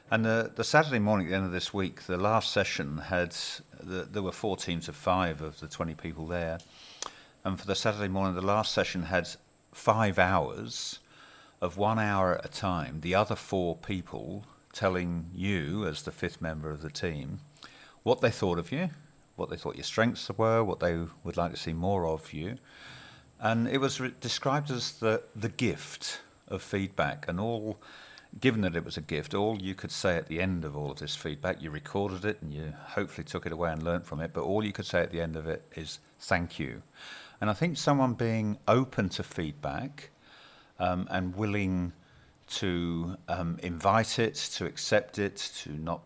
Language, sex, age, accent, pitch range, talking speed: English, male, 50-69, British, 85-110 Hz, 200 wpm